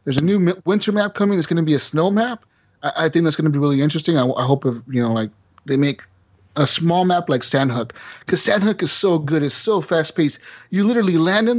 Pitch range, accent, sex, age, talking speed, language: 125-165 Hz, American, male, 30-49, 250 wpm, English